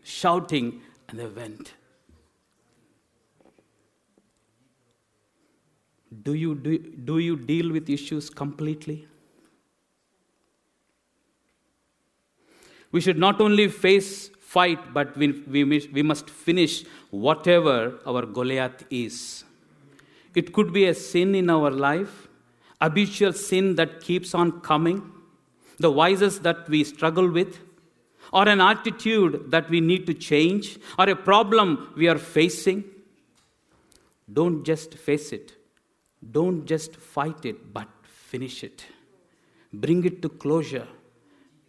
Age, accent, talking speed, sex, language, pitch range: 50-69, Indian, 110 wpm, male, English, 145-185 Hz